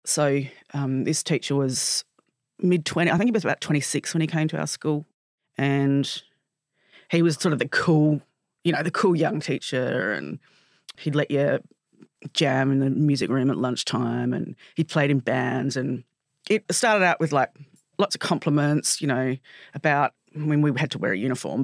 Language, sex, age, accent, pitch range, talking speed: English, female, 30-49, Australian, 135-165 Hz, 190 wpm